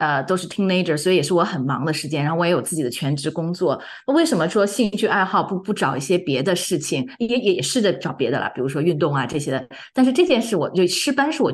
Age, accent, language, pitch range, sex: 30-49, native, Chinese, 140-190 Hz, female